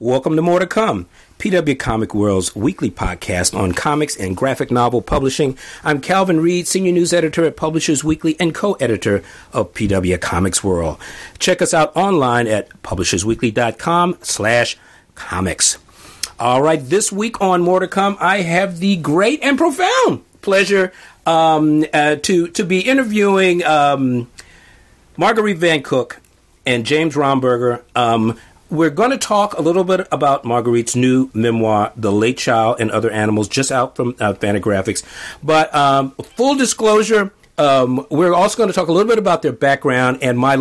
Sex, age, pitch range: male, 50-69, 115-175 Hz